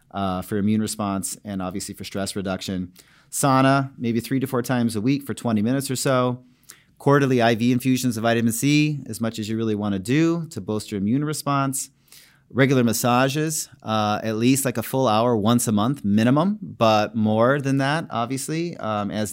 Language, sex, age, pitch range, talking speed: English, male, 30-49, 110-130 Hz, 185 wpm